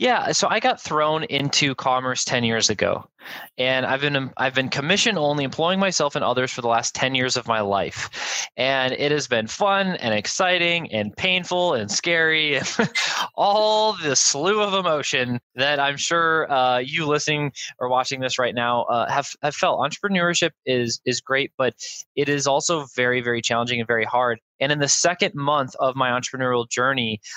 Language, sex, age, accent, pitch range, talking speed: English, male, 20-39, American, 125-150 Hz, 185 wpm